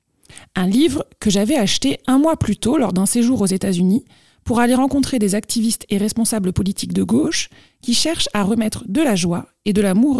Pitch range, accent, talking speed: 190-245 Hz, French, 200 wpm